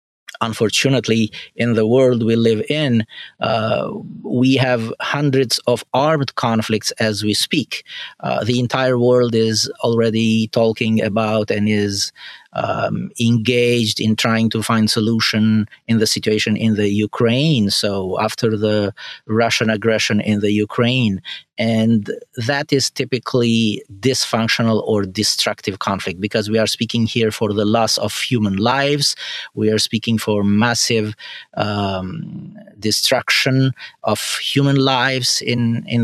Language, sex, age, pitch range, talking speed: French, male, 30-49, 110-125 Hz, 130 wpm